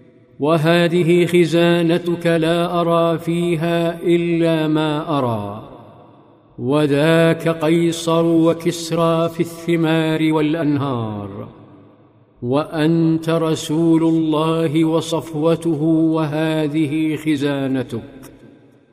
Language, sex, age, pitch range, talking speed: Arabic, male, 50-69, 150-165 Hz, 65 wpm